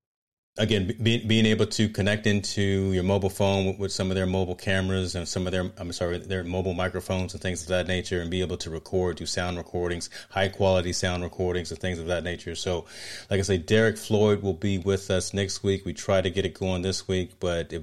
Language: English